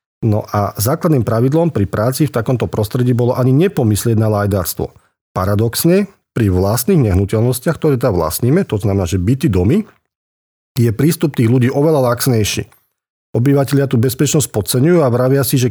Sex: male